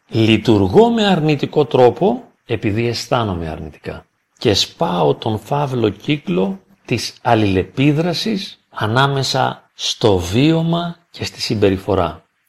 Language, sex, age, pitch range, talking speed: Greek, male, 40-59, 105-165 Hz, 95 wpm